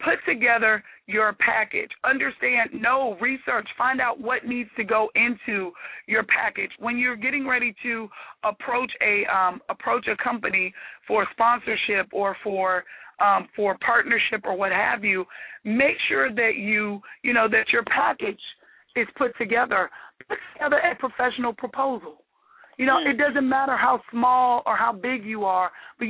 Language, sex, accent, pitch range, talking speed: English, female, American, 210-250 Hz, 155 wpm